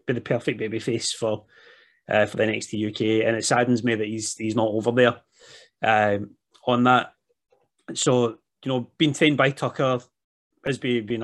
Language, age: English, 30-49